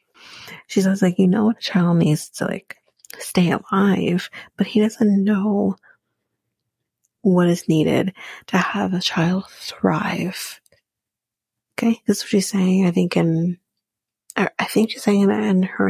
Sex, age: female, 30-49